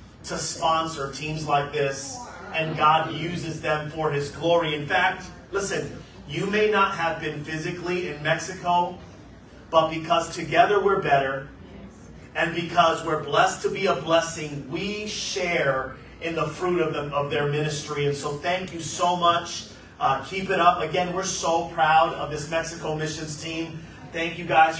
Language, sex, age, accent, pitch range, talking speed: English, male, 30-49, American, 150-170 Hz, 160 wpm